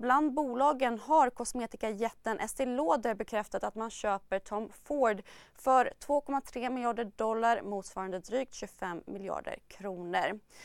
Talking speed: 120 wpm